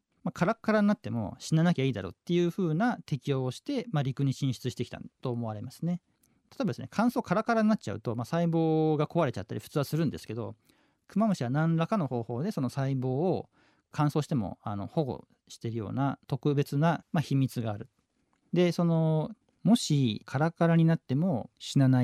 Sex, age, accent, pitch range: male, 40-59, native, 115-155 Hz